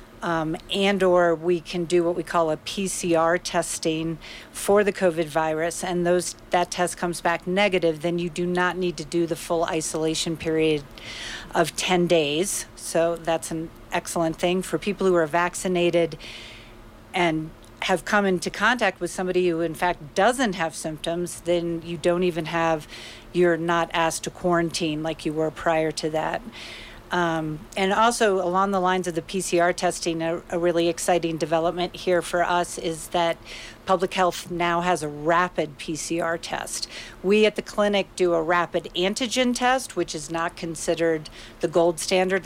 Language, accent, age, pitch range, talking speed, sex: English, American, 50-69, 160-180 Hz, 170 wpm, female